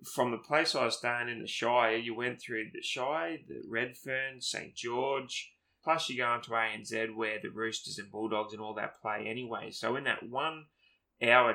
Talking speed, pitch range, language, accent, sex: 195 wpm, 110-125 Hz, English, Australian, male